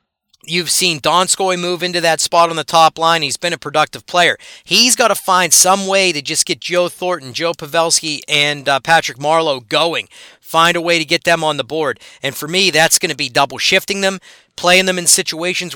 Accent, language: American, English